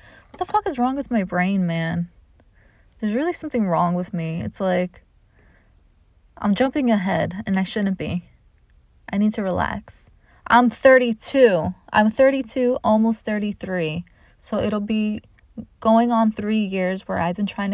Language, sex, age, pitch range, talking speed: English, female, 20-39, 170-215 Hz, 150 wpm